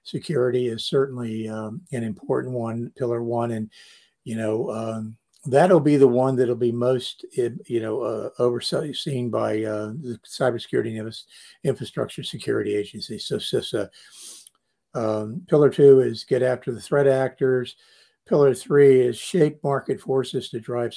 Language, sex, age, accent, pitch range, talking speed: English, male, 50-69, American, 115-135 Hz, 145 wpm